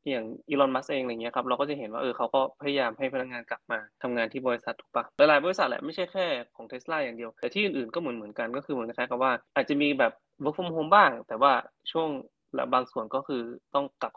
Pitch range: 120-150 Hz